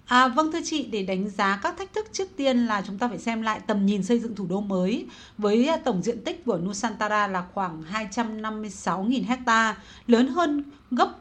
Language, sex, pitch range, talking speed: Vietnamese, female, 205-255 Hz, 205 wpm